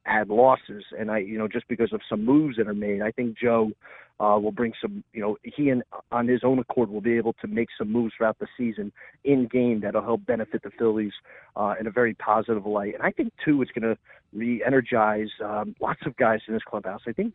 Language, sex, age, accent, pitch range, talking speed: English, male, 40-59, American, 110-125 Hz, 240 wpm